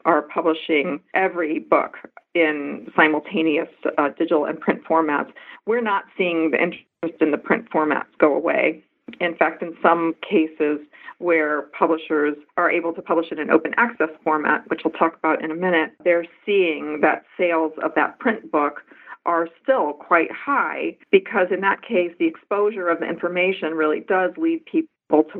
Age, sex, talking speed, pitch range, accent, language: 50-69, female, 170 wpm, 160-190 Hz, American, English